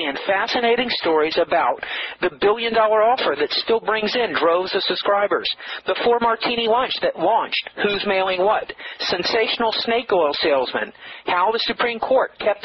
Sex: male